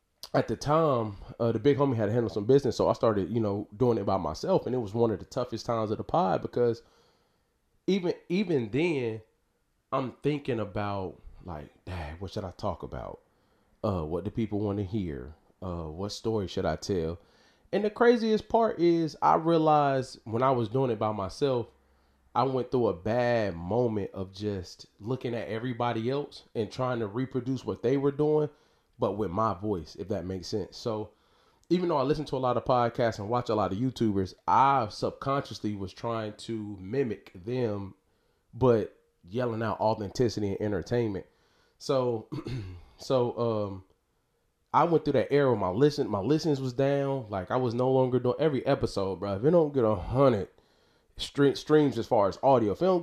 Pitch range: 100-135 Hz